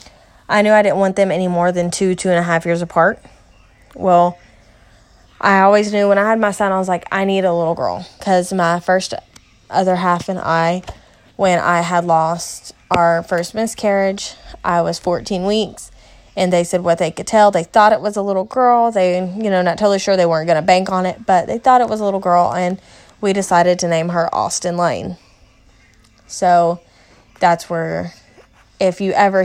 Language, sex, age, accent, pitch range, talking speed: English, female, 20-39, American, 170-200 Hz, 205 wpm